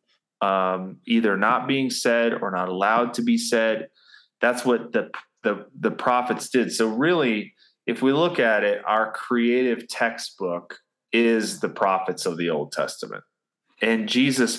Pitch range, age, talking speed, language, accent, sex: 95-125 Hz, 20-39, 150 wpm, English, American, male